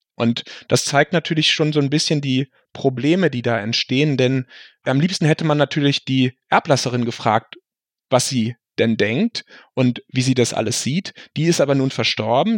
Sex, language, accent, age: male, German, German, 30-49